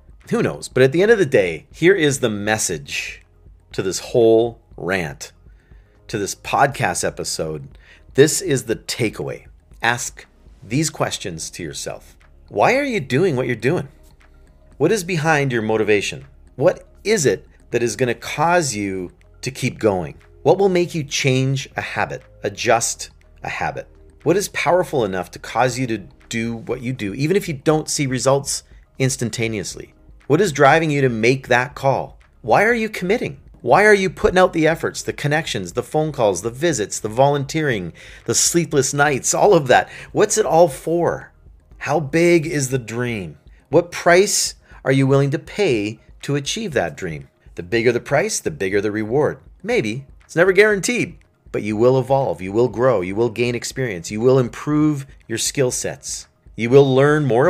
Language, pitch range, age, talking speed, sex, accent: English, 105-150 Hz, 40-59, 175 wpm, male, American